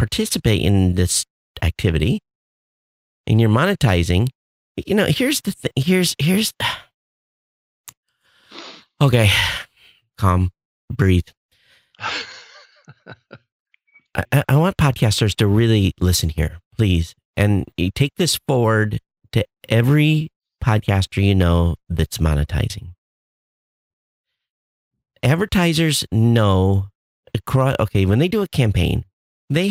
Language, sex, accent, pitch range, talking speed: English, male, American, 90-130 Hz, 95 wpm